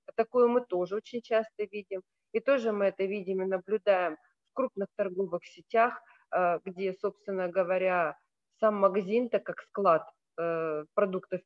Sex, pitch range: female, 180-225 Hz